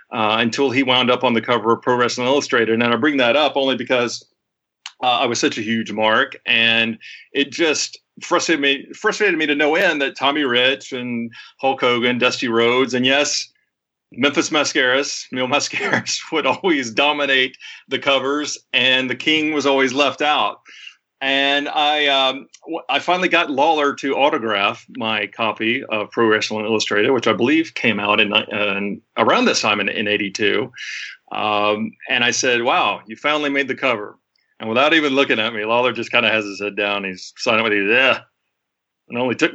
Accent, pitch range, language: American, 115-145 Hz, English